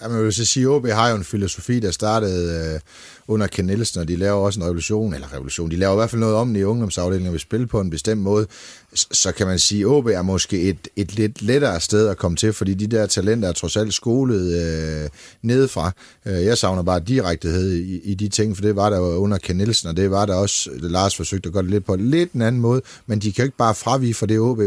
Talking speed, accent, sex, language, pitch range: 260 wpm, native, male, Danish, 90-115 Hz